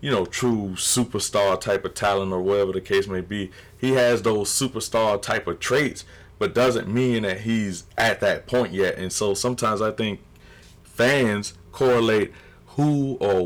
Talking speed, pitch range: 170 wpm, 95-110 Hz